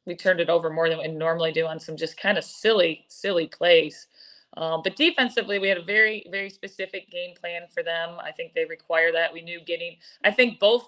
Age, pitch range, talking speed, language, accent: 20-39, 165-200 Hz, 225 wpm, English, American